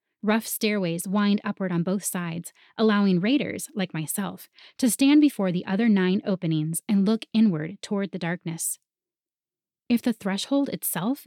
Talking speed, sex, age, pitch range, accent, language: 150 wpm, female, 20-39, 175-220 Hz, American, English